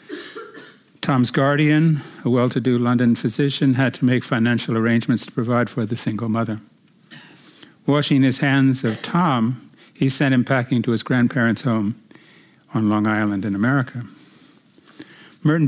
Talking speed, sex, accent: 140 wpm, male, American